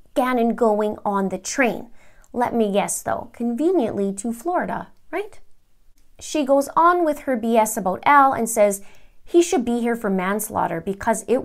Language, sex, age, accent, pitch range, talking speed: English, female, 30-49, American, 195-260 Hz, 160 wpm